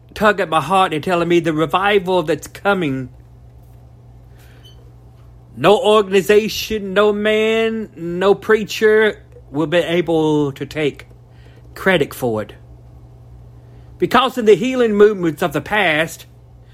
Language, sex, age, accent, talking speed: English, male, 40-59, American, 120 wpm